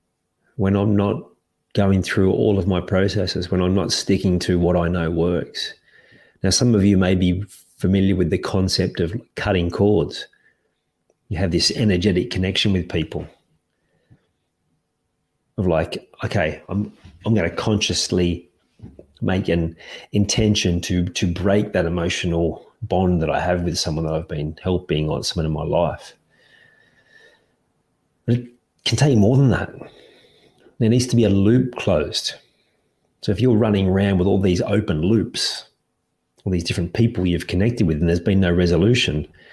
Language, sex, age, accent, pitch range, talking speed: English, male, 40-59, Australian, 90-105 Hz, 160 wpm